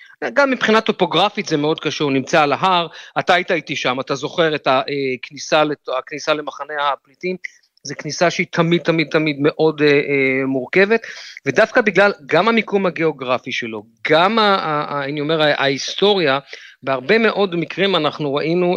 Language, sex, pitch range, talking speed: Hebrew, male, 140-185 Hz, 145 wpm